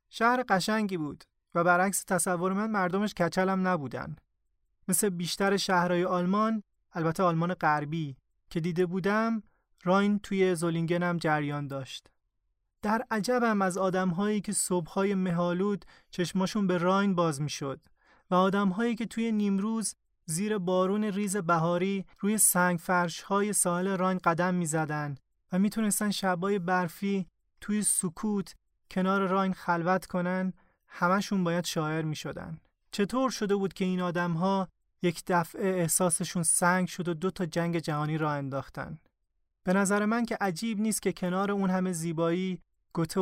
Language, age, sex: Persian, 30-49, male